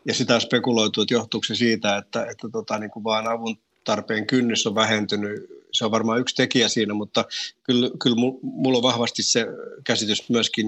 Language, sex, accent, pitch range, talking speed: Finnish, male, native, 110-125 Hz, 185 wpm